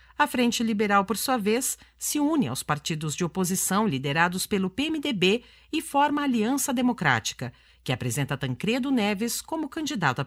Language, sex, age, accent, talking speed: Portuguese, female, 50-69, Brazilian, 160 wpm